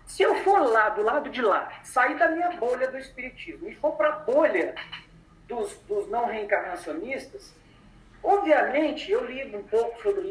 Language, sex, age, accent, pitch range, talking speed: Portuguese, male, 40-59, Brazilian, 220-355 Hz, 170 wpm